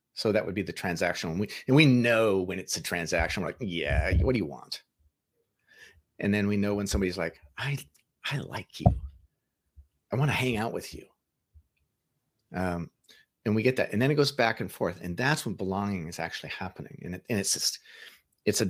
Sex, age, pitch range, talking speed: male, 40-59, 90-115 Hz, 210 wpm